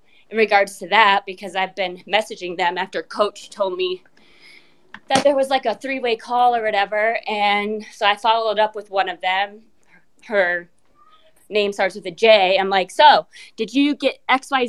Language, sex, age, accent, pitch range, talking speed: English, female, 20-39, American, 180-230 Hz, 185 wpm